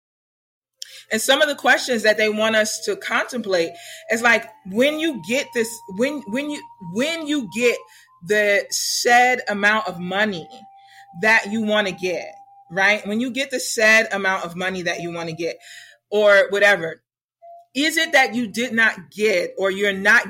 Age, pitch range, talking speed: 30-49, 205-265 Hz, 175 wpm